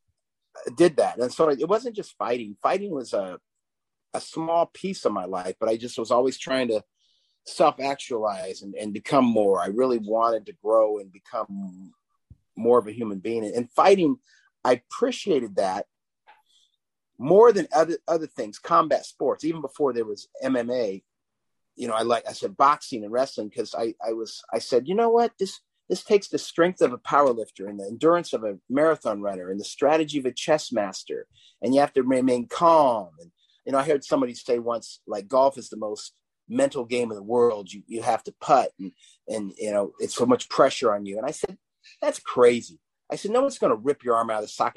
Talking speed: 210 wpm